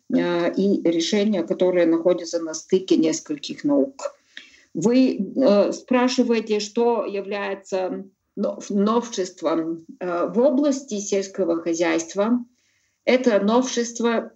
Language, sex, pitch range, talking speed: Russian, female, 185-225 Hz, 80 wpm